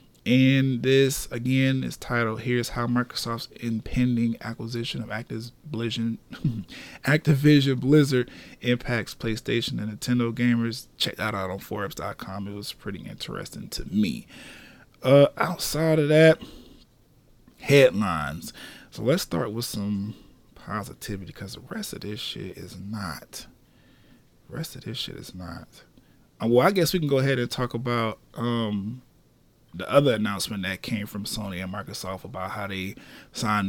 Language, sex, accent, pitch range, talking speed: English, male, American, 105-130 Hz, 140 wpm